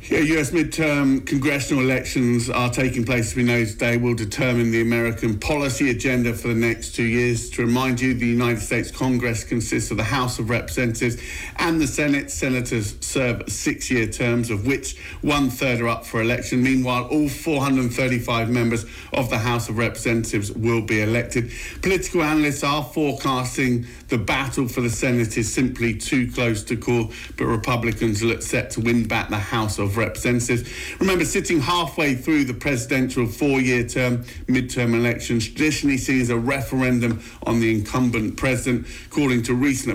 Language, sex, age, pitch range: English, male, 50-69, 115-135 Hz